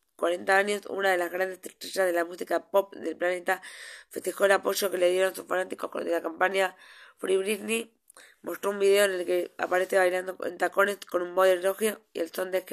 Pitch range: 175-195 Hz